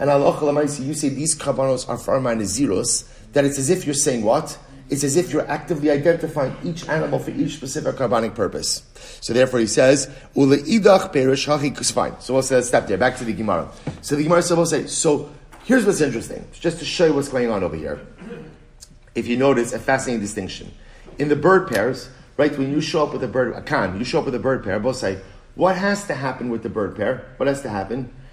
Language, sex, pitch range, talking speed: English, male, 120-150 Hz, 225 wpm